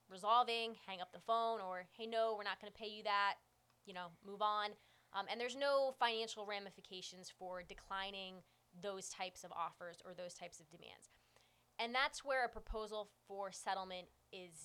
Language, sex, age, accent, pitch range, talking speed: English, female, 20-39, American, 185-225 Hz, 175 wpm